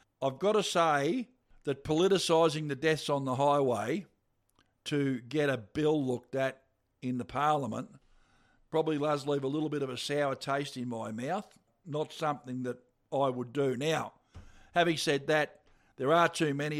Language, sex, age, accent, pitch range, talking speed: English, male, 50-69, Australian, 130-155 Hz, 170 wpm